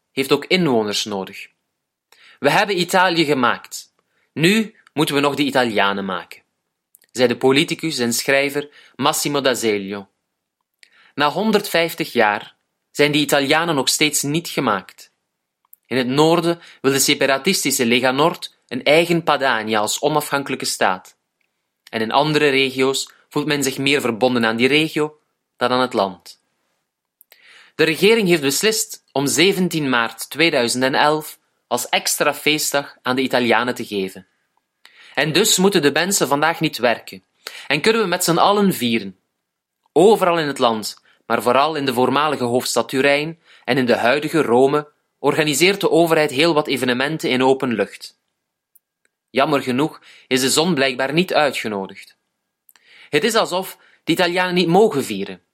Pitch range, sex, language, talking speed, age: 125-160 Hz, male, Italian, 145 wpm, 30-49